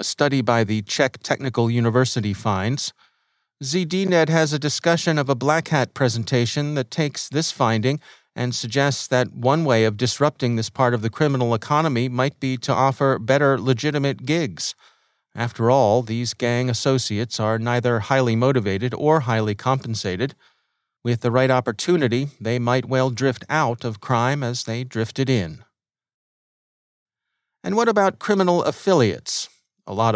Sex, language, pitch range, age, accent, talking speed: male, English, 115-145 Hz, 40-59, American, 150 wpm